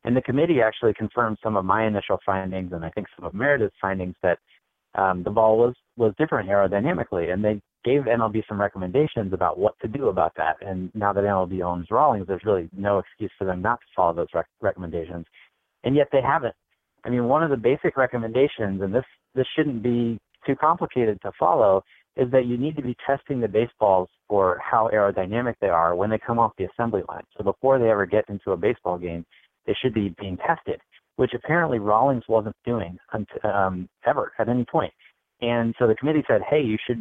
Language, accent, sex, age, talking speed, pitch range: English, American, male, 30-49, 210 wpm, 95-120 Hz